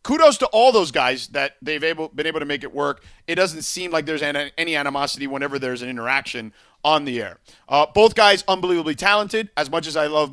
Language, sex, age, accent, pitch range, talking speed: English, male, 40-59, American, 155-220 Hz, 215 wpm